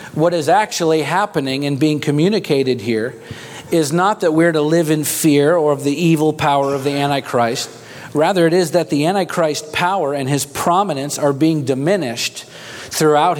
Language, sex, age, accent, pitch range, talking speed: English, male, 40-59, American, 140-170 Hz, 170 wpm